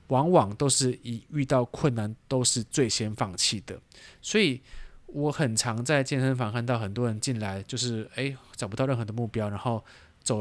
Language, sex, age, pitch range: Chinese, male, 20-39, 110-130 Hz